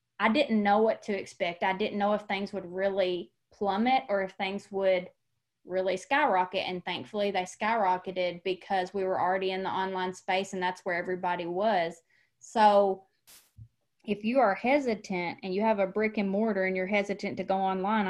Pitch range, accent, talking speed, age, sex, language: 190-225 Hz, American, 180 wpm, 20-39, female, English